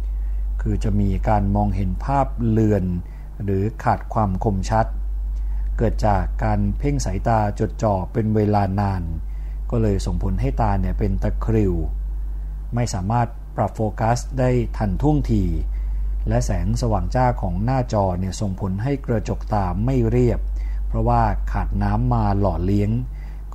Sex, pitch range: male, 90-115 Hz